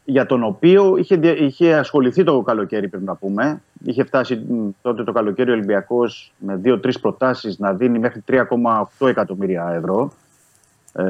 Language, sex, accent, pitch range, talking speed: Greek, male, native, 105-130 Hz, 145 wpm